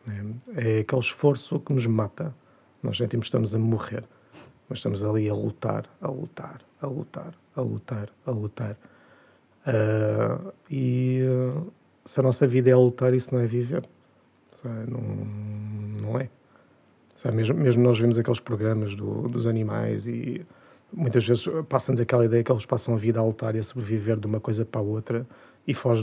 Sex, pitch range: male, 110-130 Hz